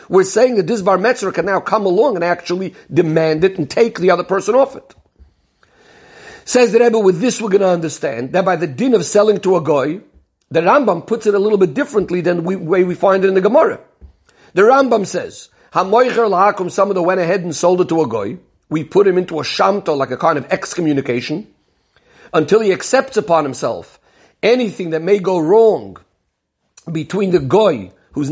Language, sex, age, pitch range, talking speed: English, male, 50-69, 165-200 Hz, 205 wpm